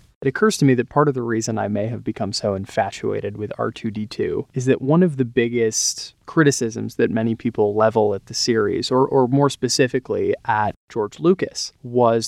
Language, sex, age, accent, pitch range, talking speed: English, male, 20-39, American, 115-130 Hz, 190 wpm